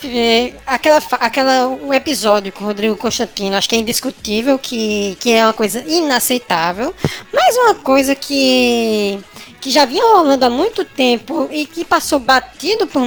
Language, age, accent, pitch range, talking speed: Portuguese, 10-29, Brazilian, 235-325 Hz, 150 wpm